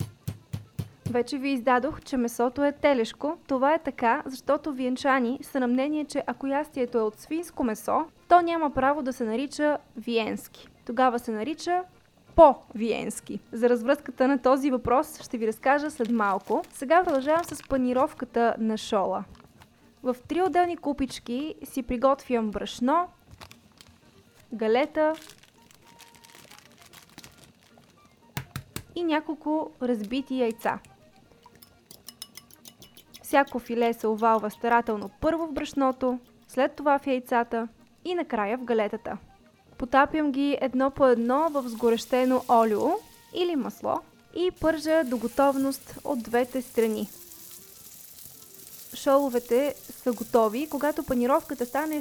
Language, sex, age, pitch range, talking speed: Bulgarian, female, 20-39, 235-295 Hz, 115 wpm